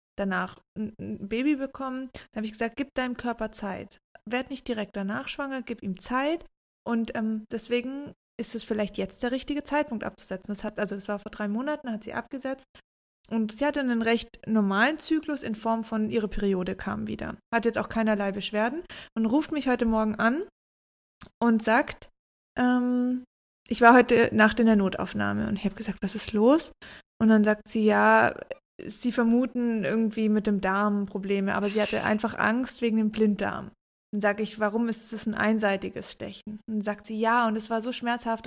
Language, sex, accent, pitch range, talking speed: German, female, German, 210-245 Hz, 190 wpm